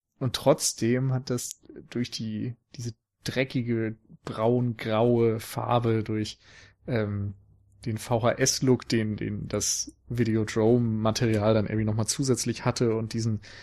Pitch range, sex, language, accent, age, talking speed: 105-125 Hz, male, German, German, 30-49, 110 wpm